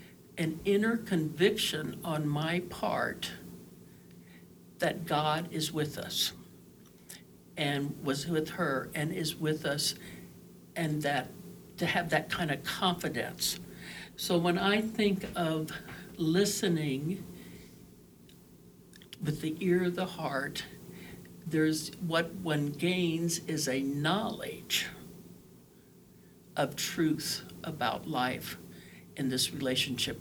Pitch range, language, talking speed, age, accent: 145-180 Hz, English, 105 wpm, 60-79, American